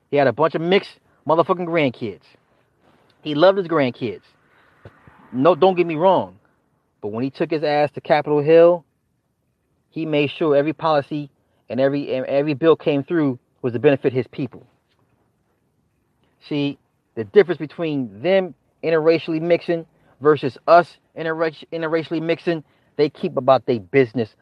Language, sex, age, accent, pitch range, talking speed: English, male, 30-49, American, 115-155 Hz, 145 wpm